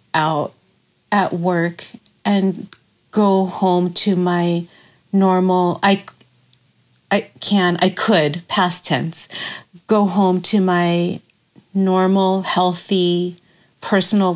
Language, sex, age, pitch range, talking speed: English, female, 40-59, 180-210 Hz, 95 wpm